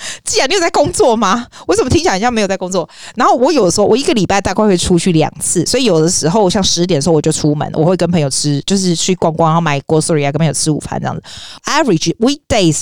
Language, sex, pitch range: Chinese, female, 145-190 Hz